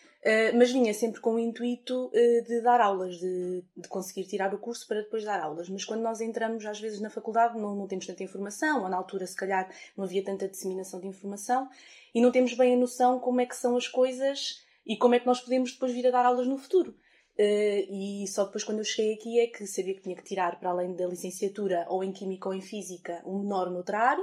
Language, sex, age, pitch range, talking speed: Portuguese, female, 20-39, 195-250 Hz, 245 wpm